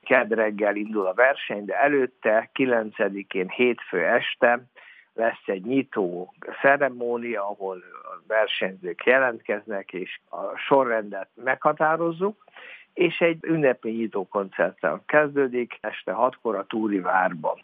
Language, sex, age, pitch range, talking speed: Hungarian, male, 60-79, 100-140 Hz, 100 wpm